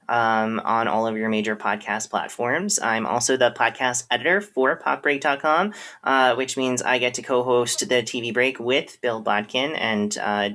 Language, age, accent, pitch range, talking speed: English, 20-39, American, 110-130 Hz, 170 wpm